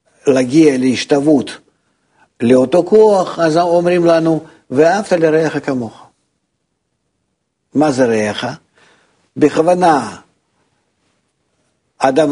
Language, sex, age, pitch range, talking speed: Hebrew, male, 50-69, 130-165 Hz, 75 wpm